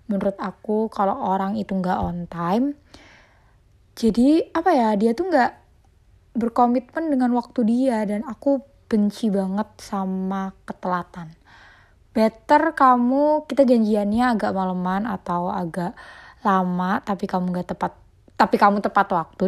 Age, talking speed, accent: 20-39, 125 wpm, native